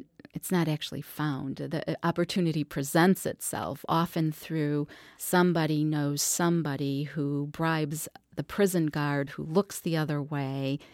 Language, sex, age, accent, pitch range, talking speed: English, female, 40-59, American, 150-175 Hz, 125 wpm